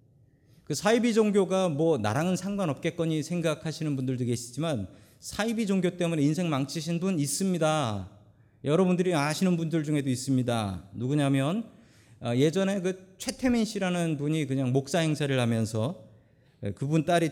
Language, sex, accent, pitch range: Korean, male, native, 115-170 Hz